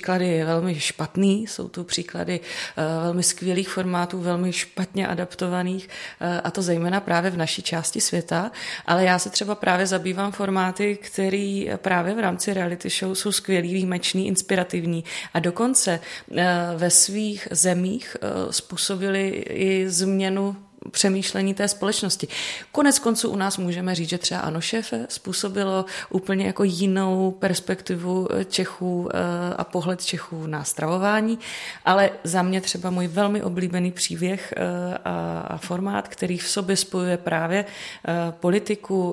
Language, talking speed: Czech, 135 wpm